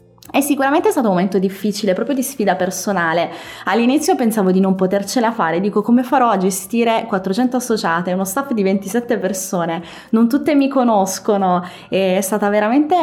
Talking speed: 160 wpm